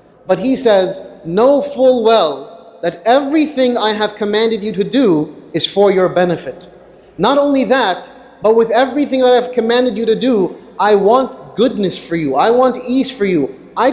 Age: 30-49